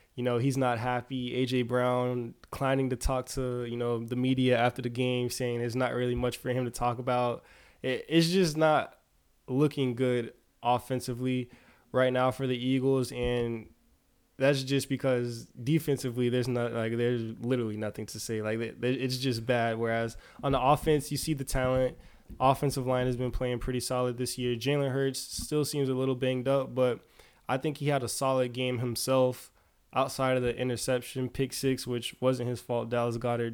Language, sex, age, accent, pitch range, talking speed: English, male, 20-39, American, 120-135 Hz, 185 wpm